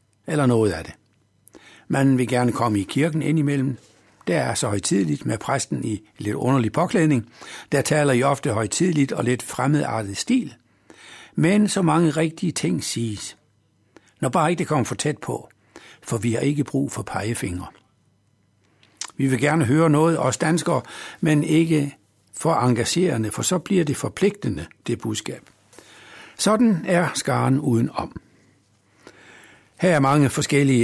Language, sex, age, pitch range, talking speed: Danish, male, 60-79, 115-155 Hz, 150 wpm